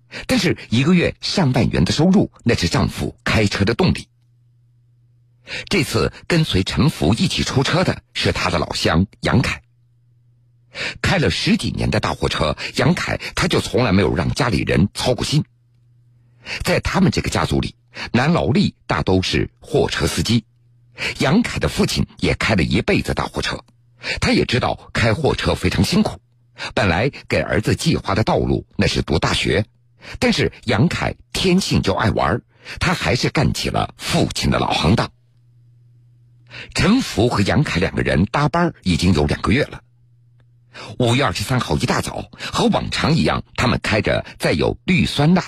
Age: 50-69